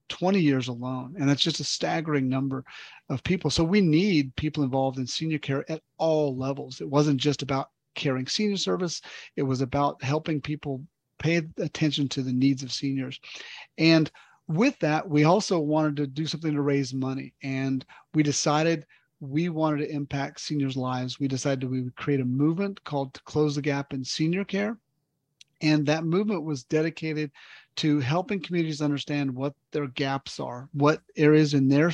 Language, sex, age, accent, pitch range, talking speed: English, male, 40-59, American, 135-155 Hz, 175 wpm